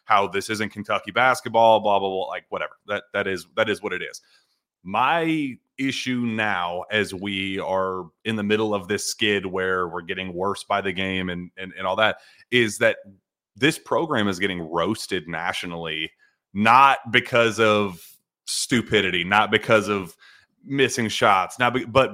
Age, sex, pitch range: 30-49, male, 95-120 Hz